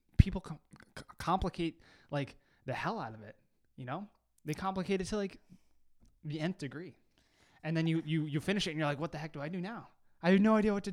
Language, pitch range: English, 135-175 Hz